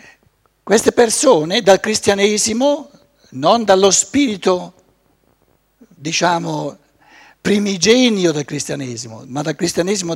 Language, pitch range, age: Italian, 150-215 Hz, 60-79